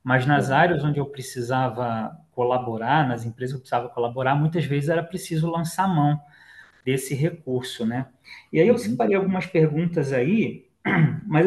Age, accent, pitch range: 20-39, Brazilian, 145-200 Hz